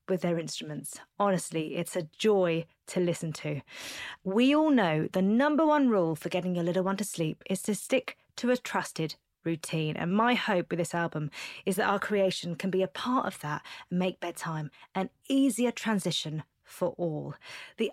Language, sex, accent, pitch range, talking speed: English, female, British, 170-250 Hz, 185 wpm